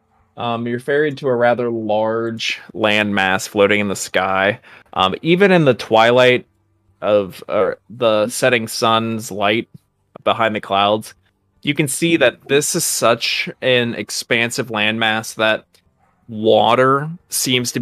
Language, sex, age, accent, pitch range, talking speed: English, male, 20-39, American, 105-125 Hz, 135 wpm